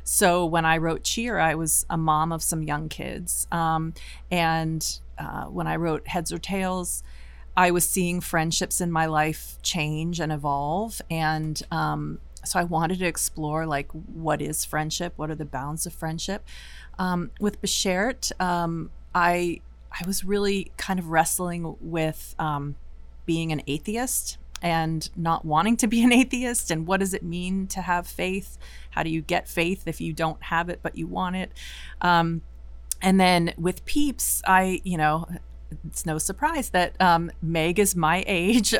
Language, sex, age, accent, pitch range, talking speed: English, female, 30-49, American, 155-185 Hz, 170 wpm